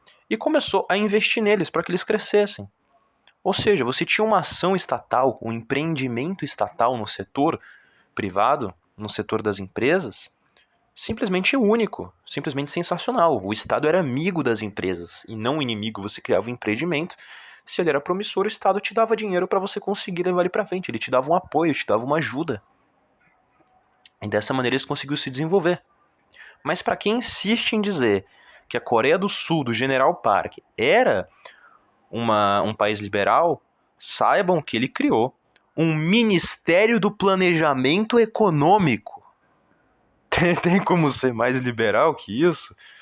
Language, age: Portuguese, 20-39